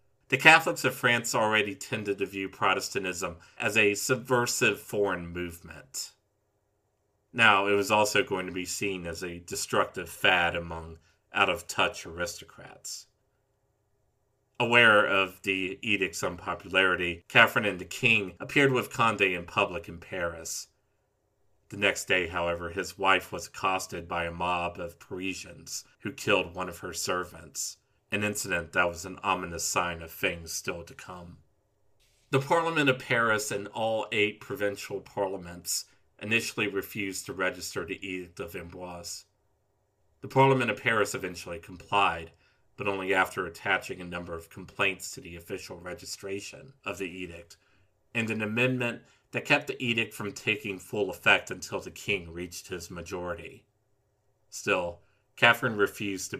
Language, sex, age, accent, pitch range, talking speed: English, male, 40-59, American, 90-110 Hz, 145 wpm